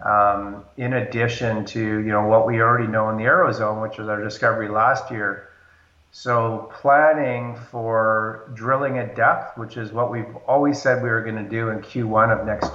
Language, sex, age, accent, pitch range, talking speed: English, male, 40-59, American, 110-125 Hz, 190 wpm